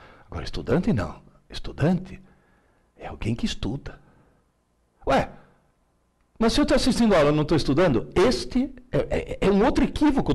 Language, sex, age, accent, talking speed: Portuguese, male, 60-79, Brazilian, 155 wpm